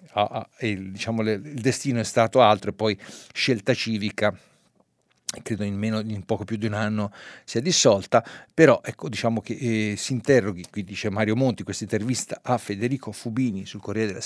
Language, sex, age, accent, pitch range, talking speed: Italian, male, 50-69, native, 110-135 Hz, 165 wpm